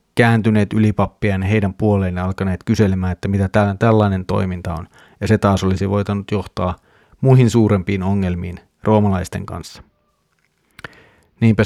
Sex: male